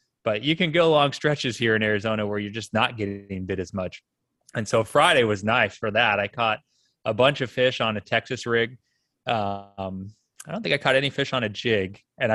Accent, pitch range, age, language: American, 105-130 Hz, 20-39, English